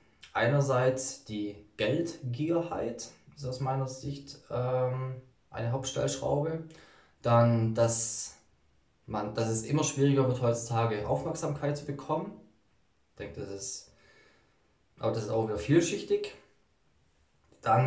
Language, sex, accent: German, male, German